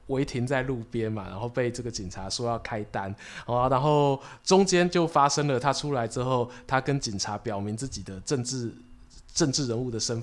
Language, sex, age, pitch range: Chinese, male, 20-39, 120-185 Hz